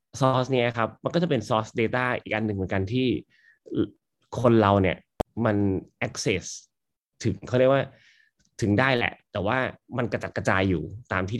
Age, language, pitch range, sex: 20-39, Thai, 95-120 Hz, male